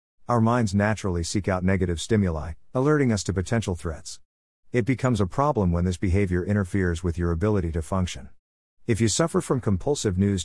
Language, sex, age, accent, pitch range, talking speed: English, male, 50-69, American, 85-115 Hz, 180 wpm